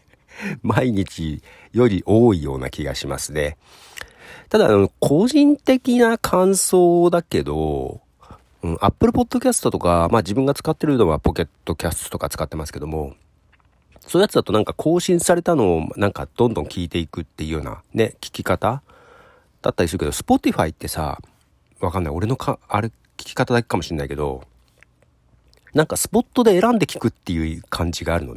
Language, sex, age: Japanese, male, 40-59